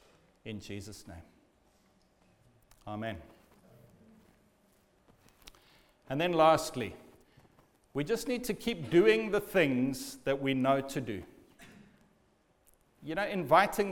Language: English